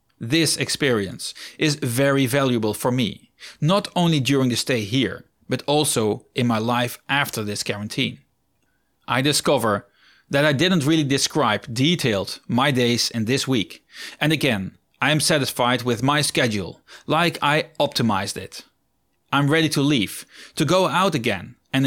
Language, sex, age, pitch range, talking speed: English, male, 30-49, 125-155 Hz, 155 wpm